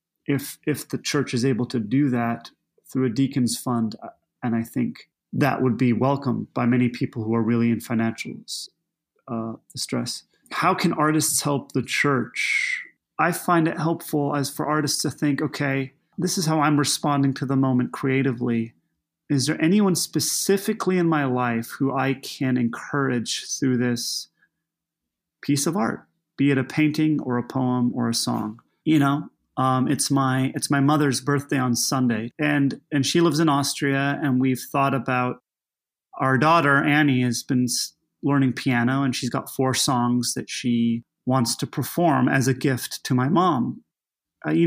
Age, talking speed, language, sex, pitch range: 30-49, 170 wpm, English, male, 125-155 Hz